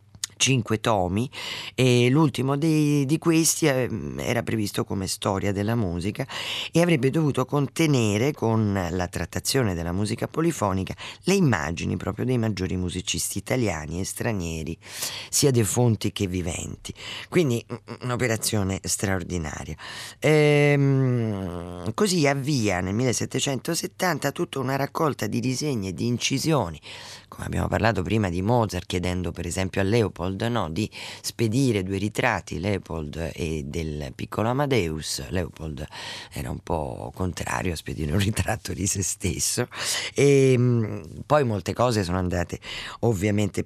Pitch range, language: 95-130 Hz, Italian